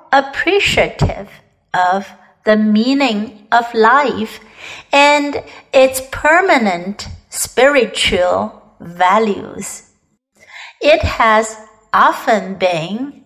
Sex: female